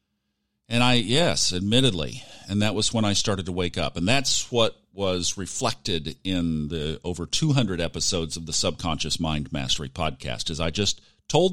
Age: 50-69